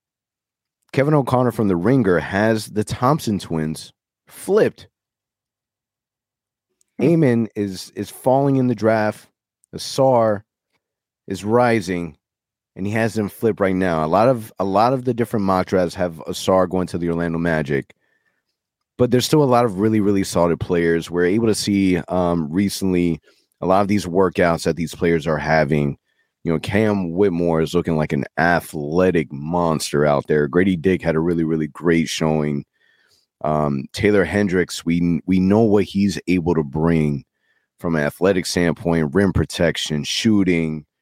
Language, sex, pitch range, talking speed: English, male, 85-110 Hz, 155 wpm